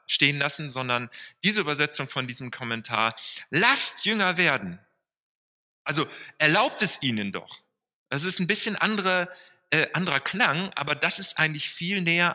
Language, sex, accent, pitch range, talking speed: German, male, German, 115-170 Hz, 145 wpm